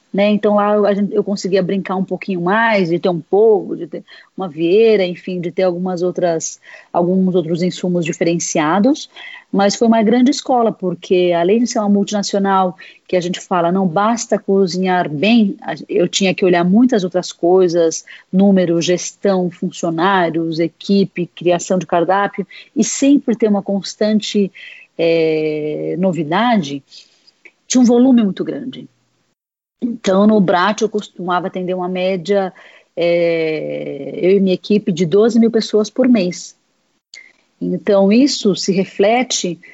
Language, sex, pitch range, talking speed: Portuguese, female, 175-210 Hz, 140 wpm